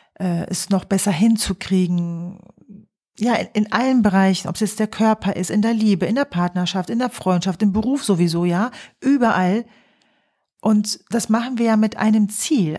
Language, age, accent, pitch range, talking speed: German, 40-59, German, 185-230 Hz, 175 wpm